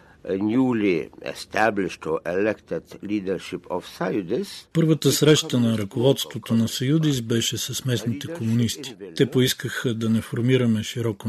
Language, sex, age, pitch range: Bulgarian, male, 50-69, 110-125 Hz